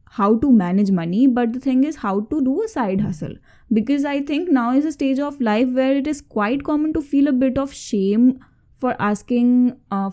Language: English